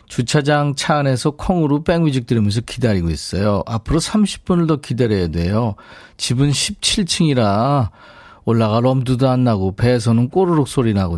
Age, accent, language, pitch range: 40-59, native, Korean, 105-150 Hz